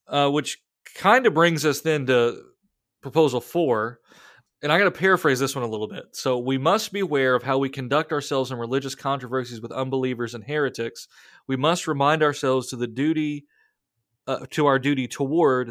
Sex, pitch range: male, 125-155 Hz